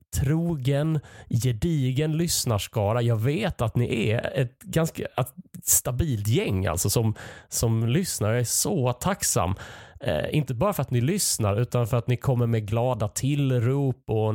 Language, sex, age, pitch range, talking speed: Swedish, male, 30-49, 100-125 Hz, 150 wpm